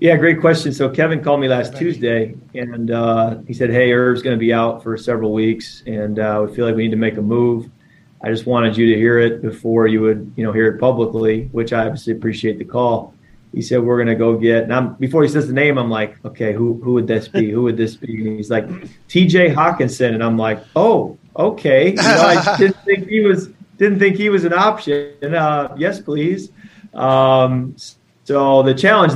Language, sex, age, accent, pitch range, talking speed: English, male, 30-49, American, 115-145 Hz, 220 wpm